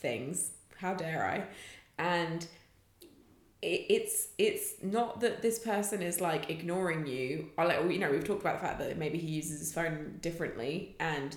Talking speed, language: 170 wpm, English